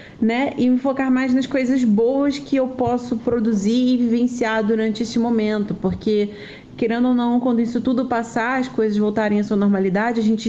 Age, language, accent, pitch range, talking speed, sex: 30-49, Portuguese, Brazilian, 200-245 Hz, 190 wpm, female